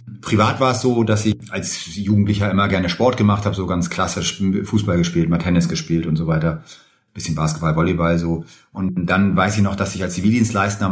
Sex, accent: male, German